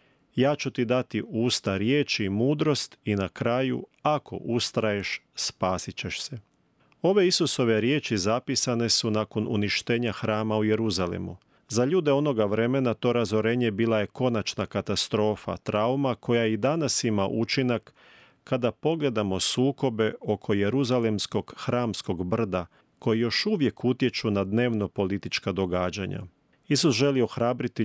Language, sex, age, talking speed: Croatian, male, 40-59, 130 wpm